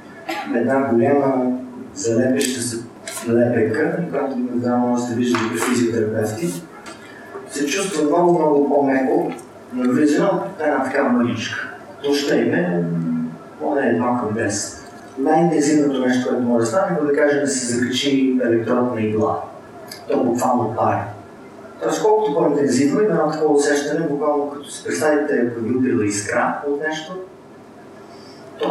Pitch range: 120-155 Hz